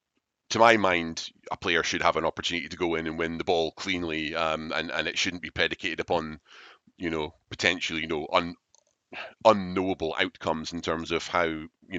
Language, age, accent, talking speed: English, 30-49, British, 190 wpm